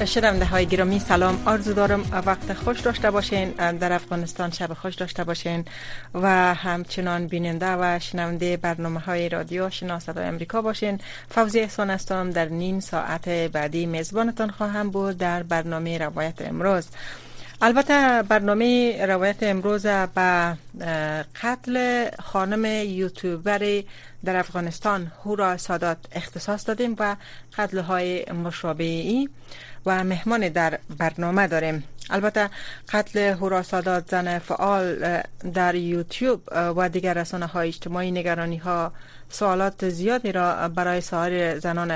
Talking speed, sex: 120 wpm, female